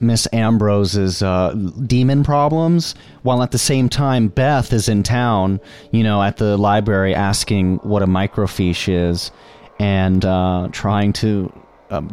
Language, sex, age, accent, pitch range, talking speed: English, male, 30-49, American, 90-120 Hz, 145 wpm